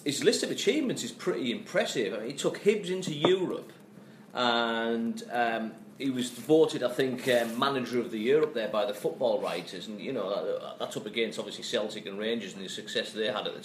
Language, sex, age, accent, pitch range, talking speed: English, male, 40-59, British, 120-155 Hz, 215 wpm